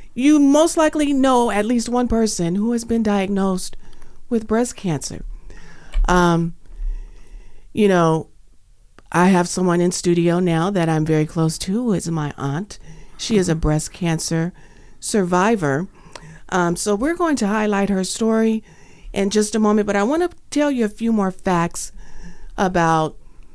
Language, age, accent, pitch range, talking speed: English, 50-69, American, 170-230 Hz, 160 wpm